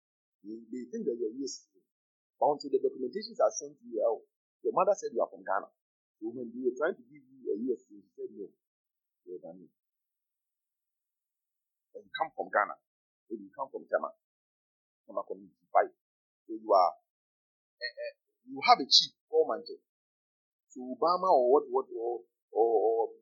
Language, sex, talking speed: English, male, 160 wpm